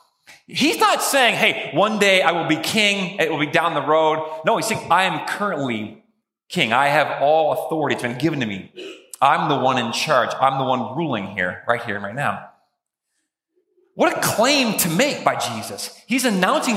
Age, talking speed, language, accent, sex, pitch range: 30-49, 200 wpm, English, American, male, 155-230 Hz